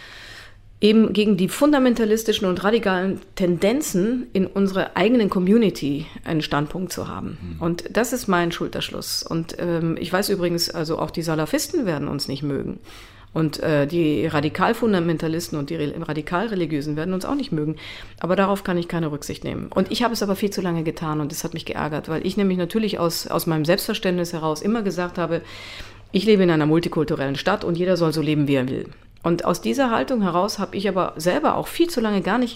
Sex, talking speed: female, 195 wpm